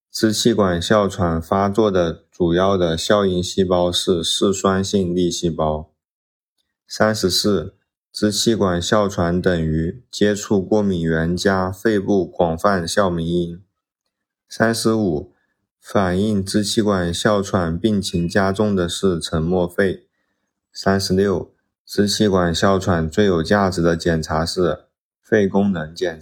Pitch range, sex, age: 85-100 Hz, male, 20-39